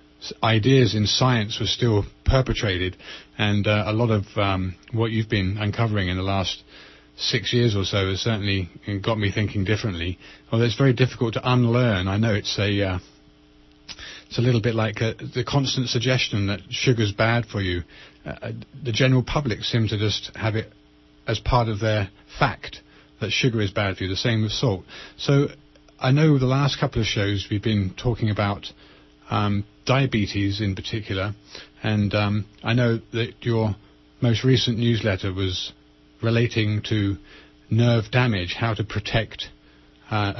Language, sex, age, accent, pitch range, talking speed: English, male, 30-49, British, 95-120 Hz, 165 wpm